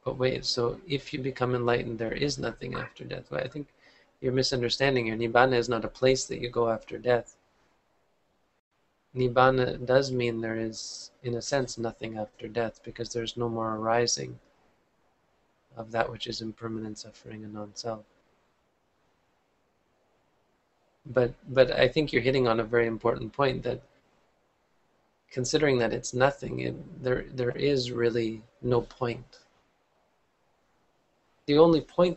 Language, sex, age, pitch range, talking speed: English, male, 20-39, 115-130 Hz, 145 wpm